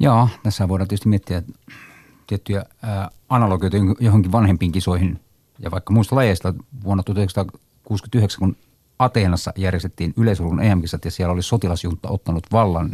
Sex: male